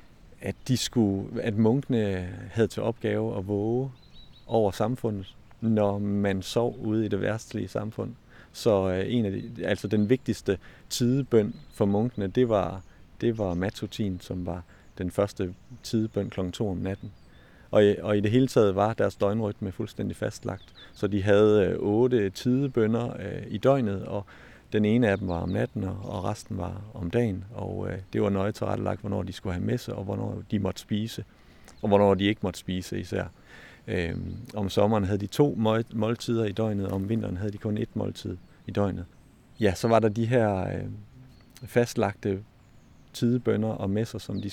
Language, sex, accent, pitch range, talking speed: Danish, male, native, 100-115 Hz, 180 wpm